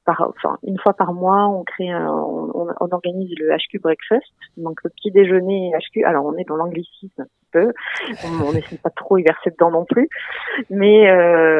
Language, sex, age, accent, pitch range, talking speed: French, female, 30-49, French, 160-200 Hz, 195 wpm